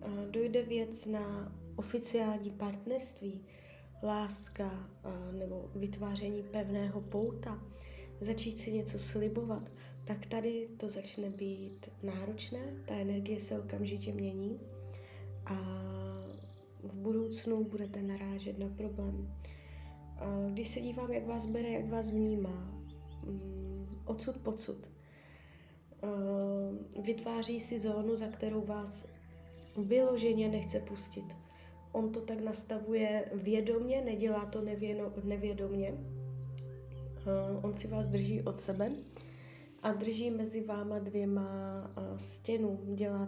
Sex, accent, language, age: female, native, Czech, 20-39